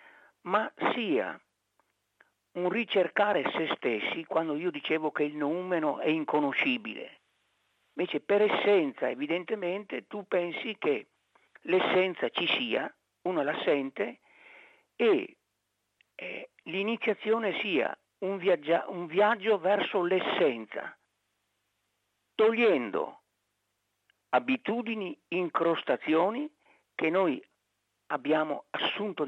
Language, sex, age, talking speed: Italian, male, 50-69, 90 wpm